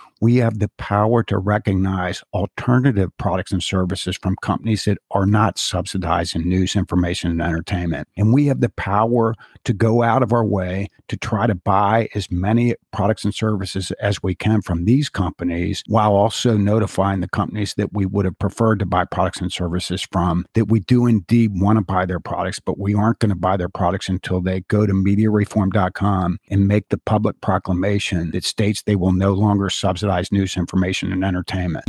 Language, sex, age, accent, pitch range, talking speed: English, male, 50-69, American, 95-110 Hz, 190 wpm